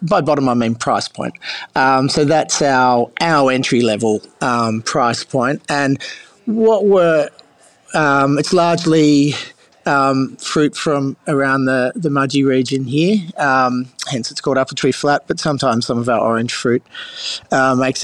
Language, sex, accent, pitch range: English, male, Australian, 130-160 Hz